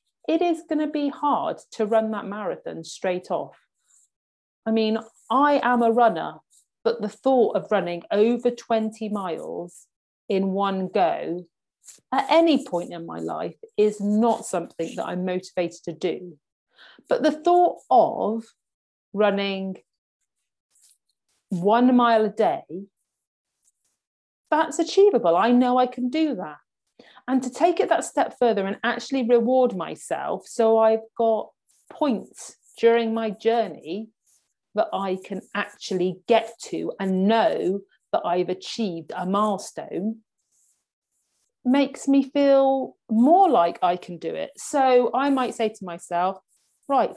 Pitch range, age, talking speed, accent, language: 190-255 Hz, 40-59, 135 wpm, British, English